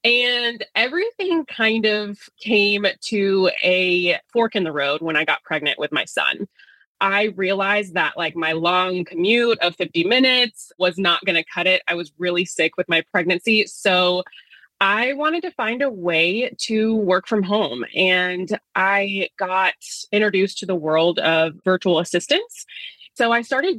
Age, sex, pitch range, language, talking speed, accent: 20-39, female, 175-220 Hz, English, 160 wpm, American